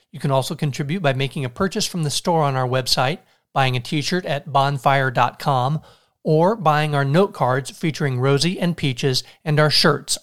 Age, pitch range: 40-59, 130-160 Hz